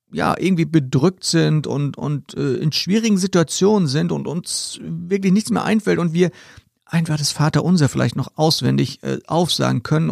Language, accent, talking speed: German, German, 170 wpm